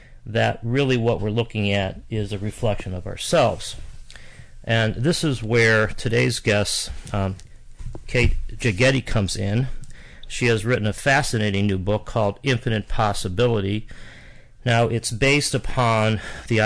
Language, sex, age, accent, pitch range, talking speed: English, male, 40-59, American, 105-120 Hz, 135 wpm